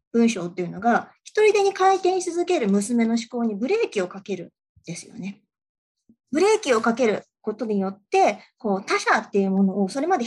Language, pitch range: Japanese, 200-310 Hz